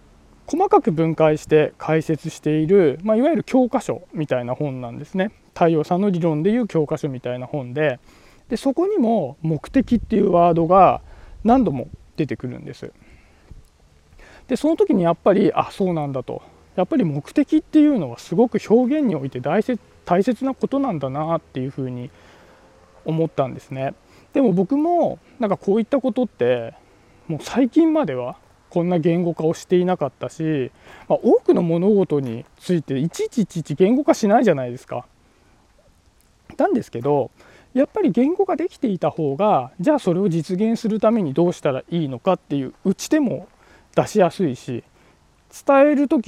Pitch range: 145-240 Hz